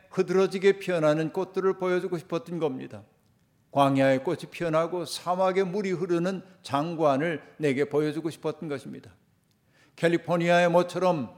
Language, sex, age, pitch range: Korean, male, 50-69, 140-170 Hz